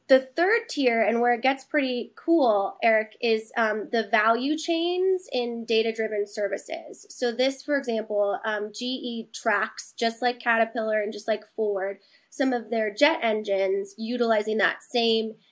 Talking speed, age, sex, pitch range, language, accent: 160 wpm, 20-39, female, 215-260 Hz, English, American